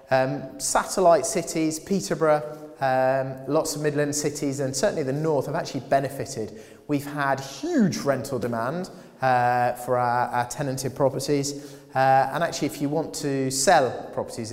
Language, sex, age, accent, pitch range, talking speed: English, male, 30-49, British, 125-155 Hz, 150 wpm